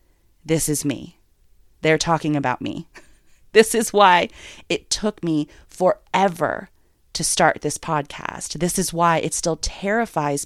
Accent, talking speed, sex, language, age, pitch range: American, 140 wpm, female, English, 30-49, 145-185 Hz